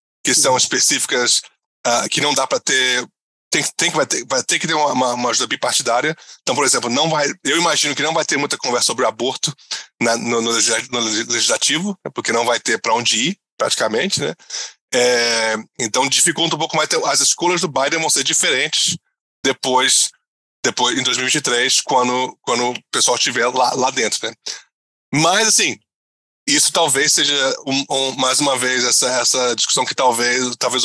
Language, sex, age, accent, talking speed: Portuguese, male, 20-39, Brazilian, 180 wpm